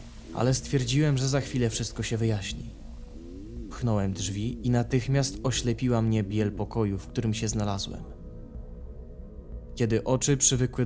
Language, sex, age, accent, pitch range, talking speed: Polish, male, 20-39, native, 85-120 Hz, 125 wpm